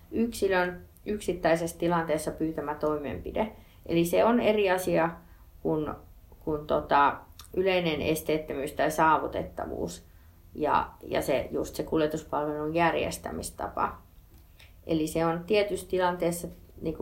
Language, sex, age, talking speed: Finnish, female, 30-49, 100 wpm